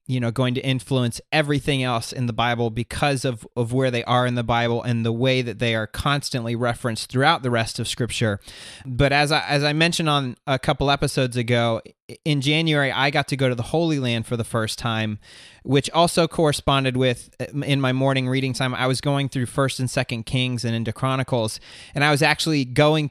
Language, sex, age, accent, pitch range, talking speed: English, male, 30-49, American, 120-140 Hz, 215 wpm